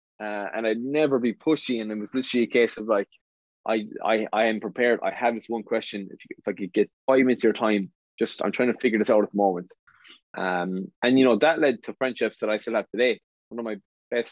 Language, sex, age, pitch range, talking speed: English, male, 20-39, 105-120 Hz, 260 wpm